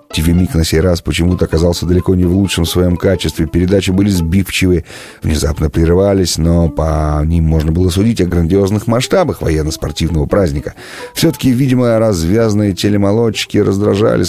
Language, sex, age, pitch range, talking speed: Russian, male, 30-49, 85-120 Hz, 140 wpm